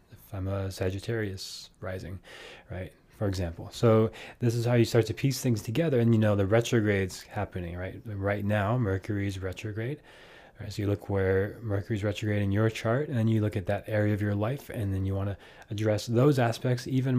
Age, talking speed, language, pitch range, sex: 20-39, 195 wpm, English, 100-125 Hz, male